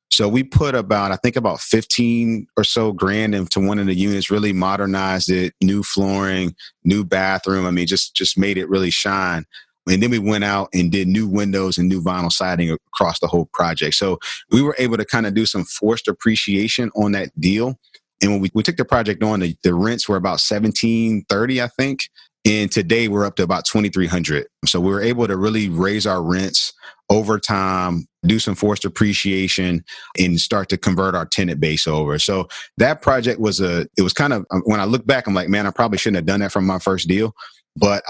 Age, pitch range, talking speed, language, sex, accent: 30-49, 95-110 Hz, 210 wpm, English, male, American